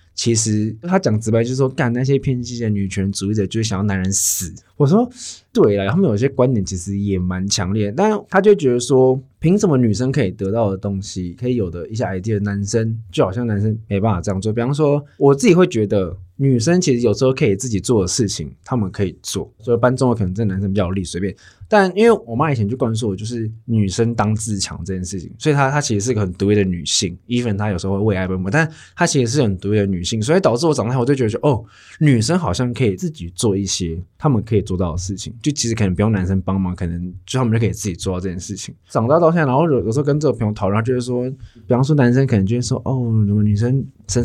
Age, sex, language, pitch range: 20-39, male, Chinese, 95-130 Hz